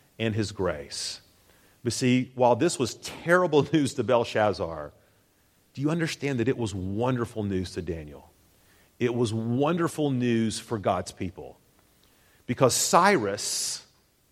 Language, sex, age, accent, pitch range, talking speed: English, male, 40-59, American, 95-135 Hz, 130 wpm